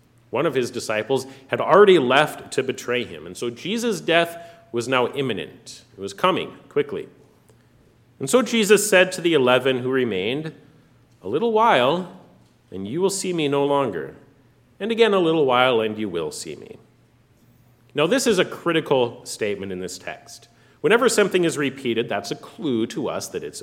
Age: 40-59